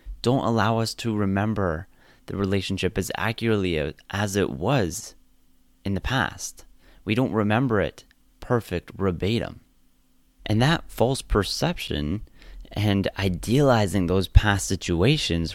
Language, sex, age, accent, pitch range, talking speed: English, male, 30-49, American, 90-110 Hz, 115 wpm